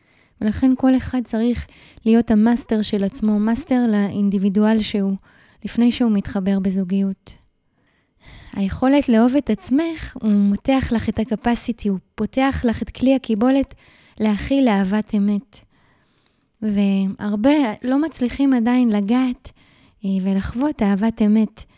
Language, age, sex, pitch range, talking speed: Hebrew, 20-39, female, 205-245 Hz, 115 wpm